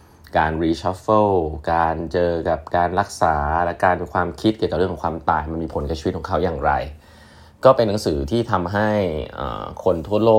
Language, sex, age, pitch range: Thai, male, 20-39, 80-105 Hz